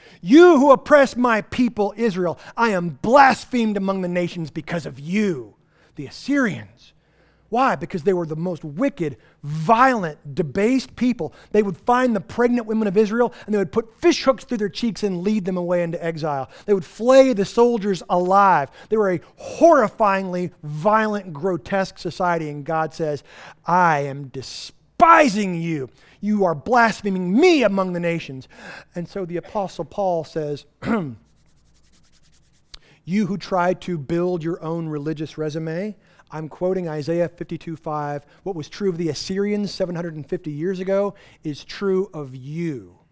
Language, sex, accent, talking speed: English, male, American, 150 wpm